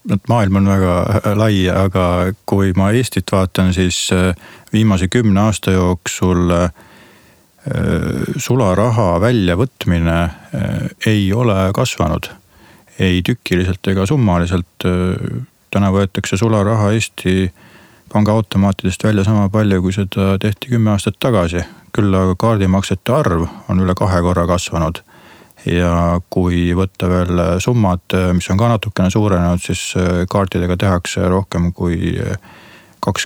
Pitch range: 90-105 Hz